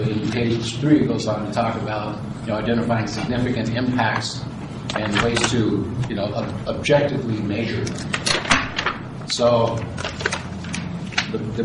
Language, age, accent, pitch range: English, 50-69, American, 110-125 Hz